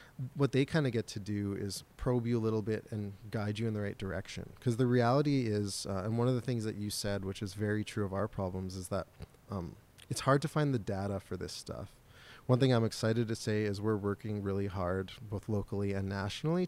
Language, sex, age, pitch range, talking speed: English, male, 20-39, 100-120 Hz, 240 wpm